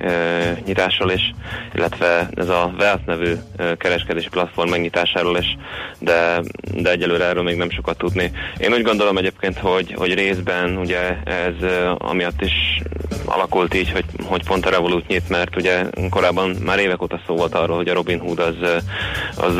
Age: 20-39